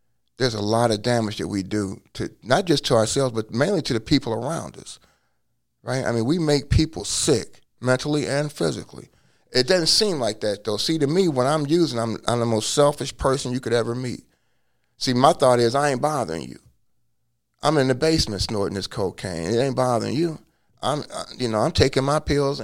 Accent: American